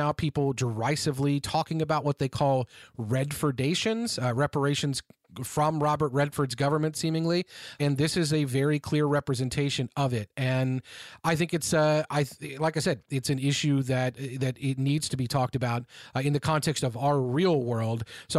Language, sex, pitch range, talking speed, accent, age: English, male, 130-165 Hz, 180 wpm, American, 40-59